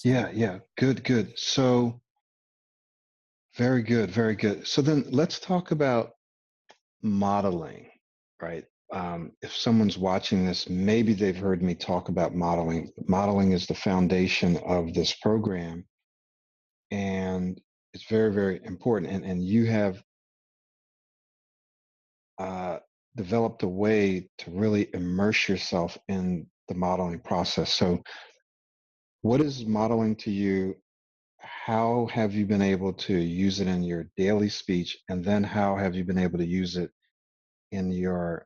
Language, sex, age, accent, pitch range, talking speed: English, male, 40-59, American, 90-110 Hz, 135 wpm